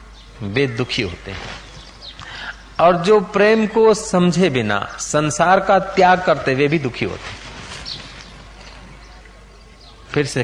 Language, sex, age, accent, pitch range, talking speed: Hindi, male, 50-69, native, 150-200 Hz, 120 wpm